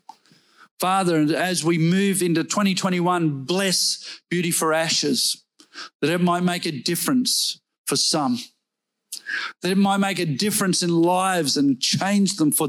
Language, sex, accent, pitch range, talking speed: English, male, Australian, 150-195 Hz, 140 wpm